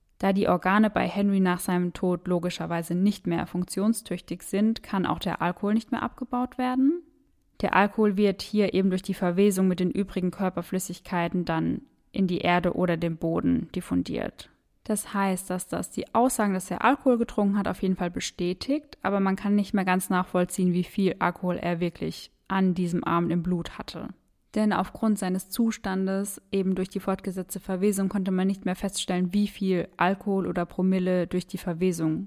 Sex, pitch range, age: female, 180-210 Hz, 20-39